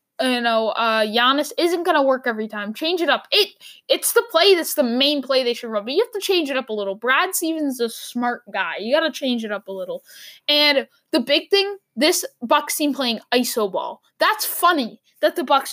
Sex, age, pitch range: female, 10-29, 240-325 Hz